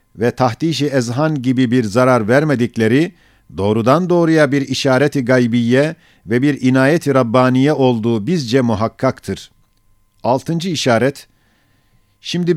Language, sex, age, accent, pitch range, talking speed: Turkish, male, 50-69, native, 120-145 Hz, 100 wpm